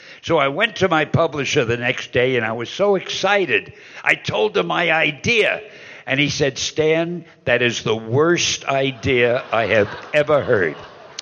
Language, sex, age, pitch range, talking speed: English, male, 60-79, 130-180 Hz, 170 wpm